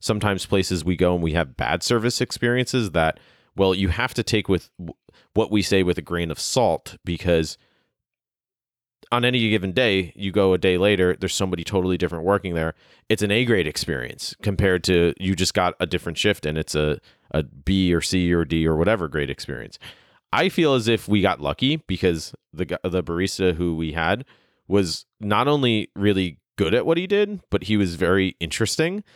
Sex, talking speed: male, 195 wpm